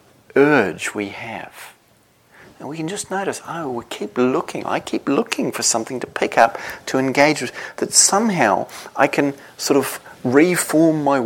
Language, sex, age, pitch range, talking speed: English, male, 40-59, 115-145 Hz, 165 wpm